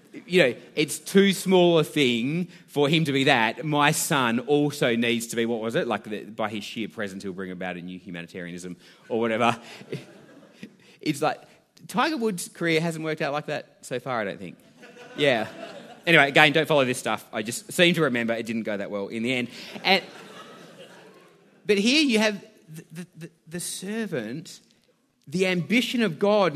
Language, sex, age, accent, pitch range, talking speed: English, male, 30-49, Australian, 130-185 Hz, 185 wpm